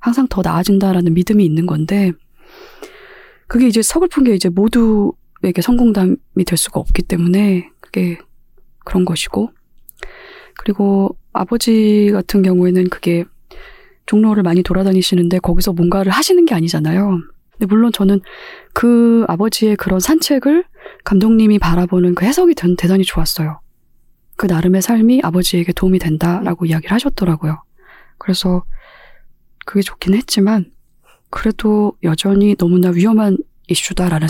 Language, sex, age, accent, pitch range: Korean, female, 20-39, native, 175-225 Hz